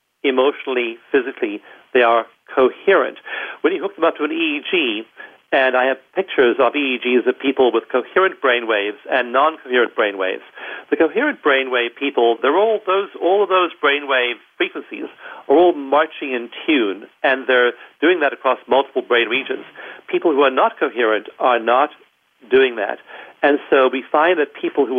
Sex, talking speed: male, 175 wpm